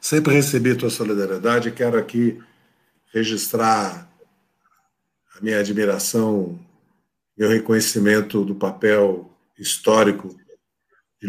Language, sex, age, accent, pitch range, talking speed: Portuguese, male, 50-69, Brazilian, 105-145 Hz, 90 wpm